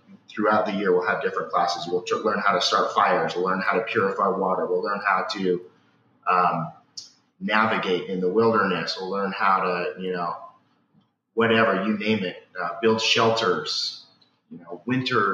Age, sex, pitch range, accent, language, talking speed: 30-49, male, 95-115 Hz, American, English, 170 wpm